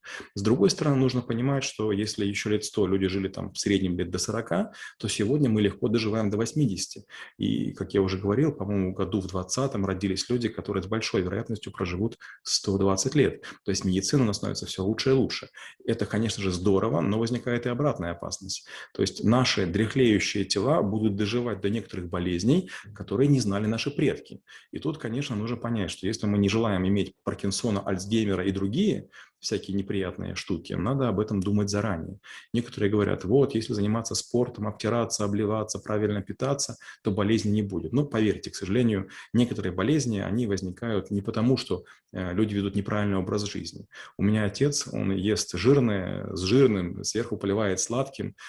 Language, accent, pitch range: Russian, native, 100-115 Hz